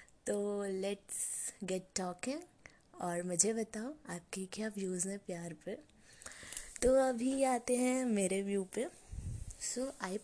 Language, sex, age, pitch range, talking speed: Hindi, female, 20-39, 190-230 Hz, 130 wpm